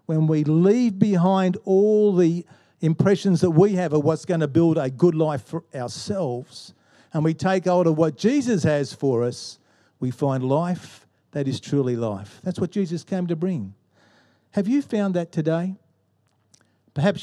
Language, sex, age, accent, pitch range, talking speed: English, male, 50-69, Australian, 125-175 Hz, 170 wpm